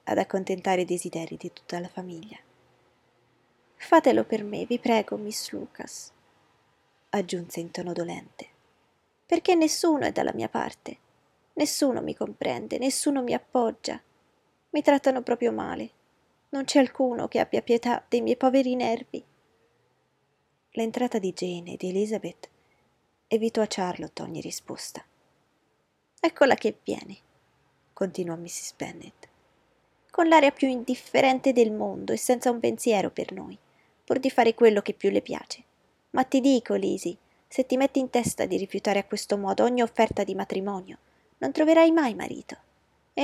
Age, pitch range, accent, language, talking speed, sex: 20-39, 190-260 Hz, native, Italian, 145 wpm, female